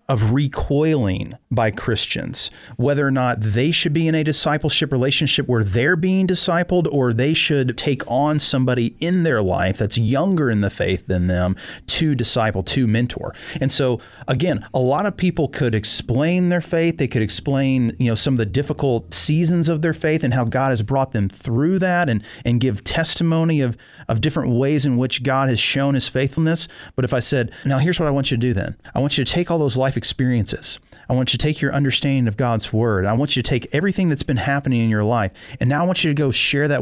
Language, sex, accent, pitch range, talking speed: English, male, American, 120-150 Hz, 225 wpm